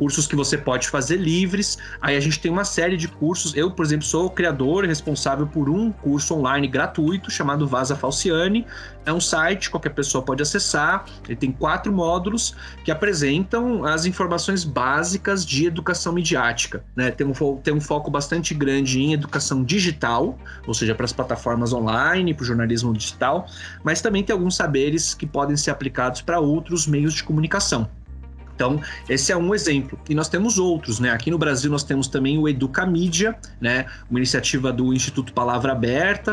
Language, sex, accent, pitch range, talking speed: Portuguese, male, Brazilian, 125-170 Hz, 180 wpm